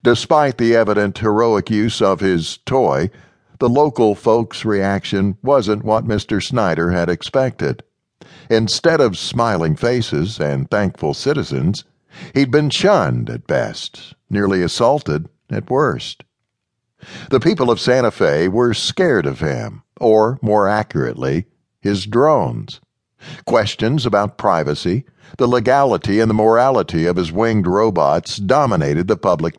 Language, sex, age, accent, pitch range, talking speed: English, male, 60-79, American, 100-125 Hz, 130 wpm